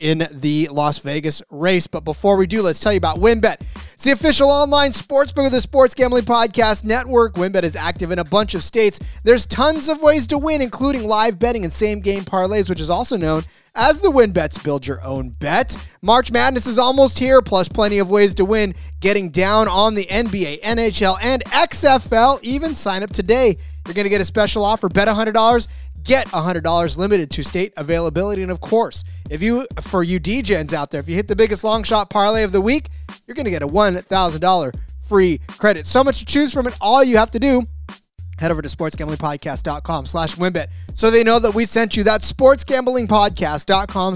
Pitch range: 155-230 Hz